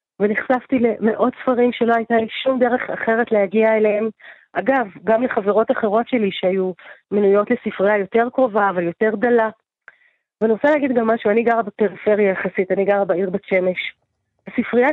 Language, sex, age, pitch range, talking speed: Hebrew, female, 30-49, 205-245 Hz, 155 wpm